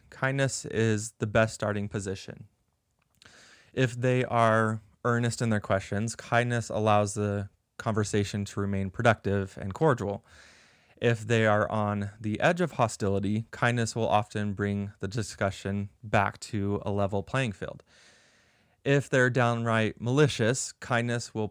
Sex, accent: male, American